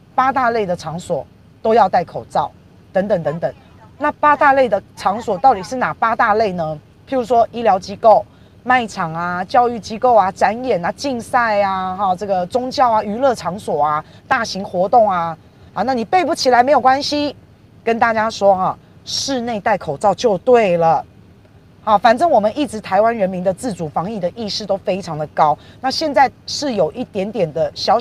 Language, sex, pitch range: Chinese, female, 180-250 Hz